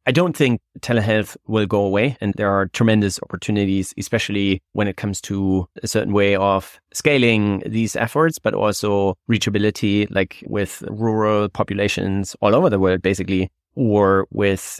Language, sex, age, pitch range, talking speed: English, male, 30-49, 95-115 Hz, 155 wpm